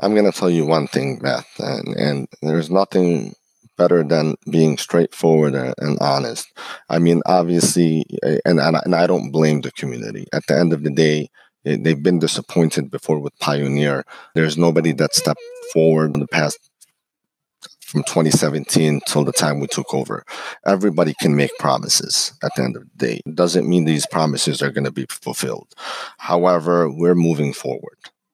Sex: male